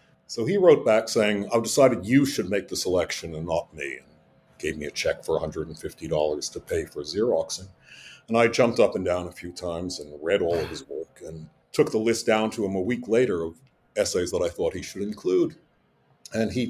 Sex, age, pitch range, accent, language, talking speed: male, 60-79, 90-125 Hz, American, English, 220 wpm